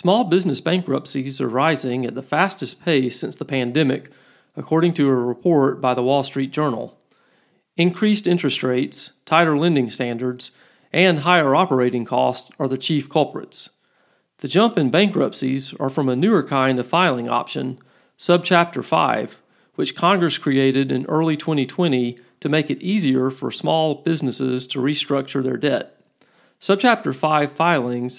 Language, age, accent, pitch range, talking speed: English, 40-59, American, 130-160 Hz, 145 wpm